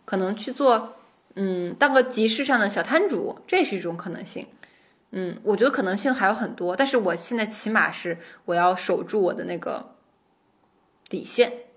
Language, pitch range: Chinese, 180-245 Hz